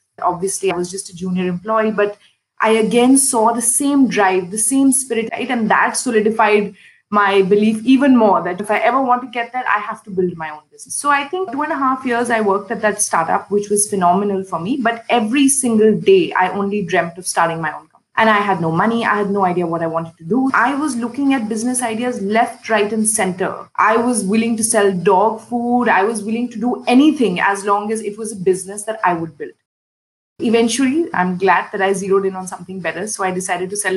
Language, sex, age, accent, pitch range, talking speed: English, female, 20-39, Indian, 185-235 Hz, 235 wpm